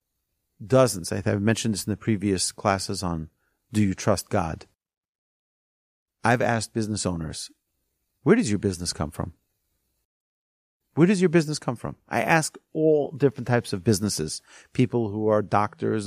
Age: 40-59